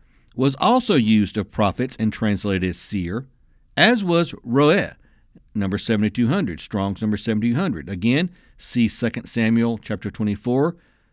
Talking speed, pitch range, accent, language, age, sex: 125 wpm, 105-145 Hz, American, English, 60-79, male